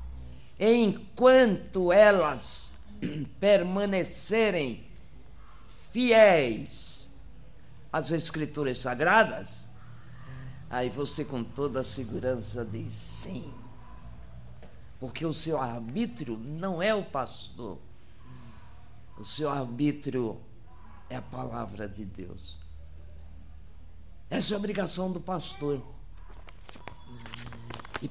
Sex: male